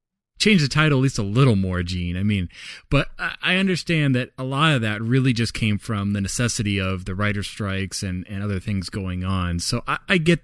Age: 30-49